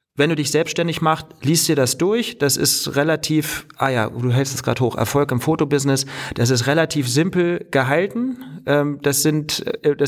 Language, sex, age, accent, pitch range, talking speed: German, male, 40-59, German, 120-150 Hz, 180 wpm